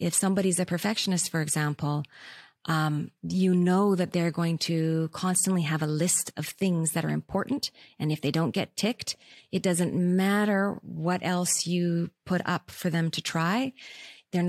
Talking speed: 170 wpm